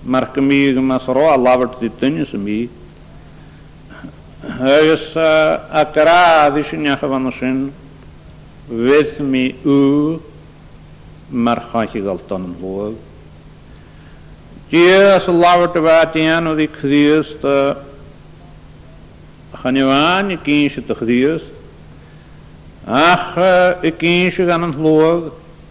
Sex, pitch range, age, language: male, 120-155 Hz, 60-79, English